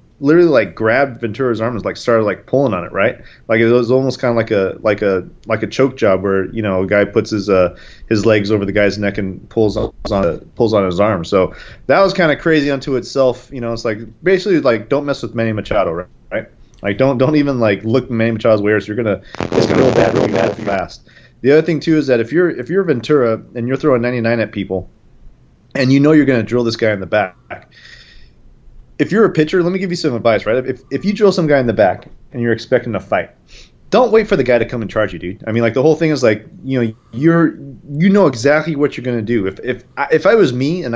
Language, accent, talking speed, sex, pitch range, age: English, American, 260 wpm, male, 110-140 Hz, 30-49